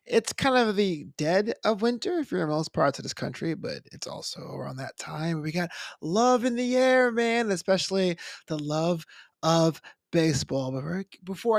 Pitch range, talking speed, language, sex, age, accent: 145-215 Hz, 180 wpm, English, male, 20-39, American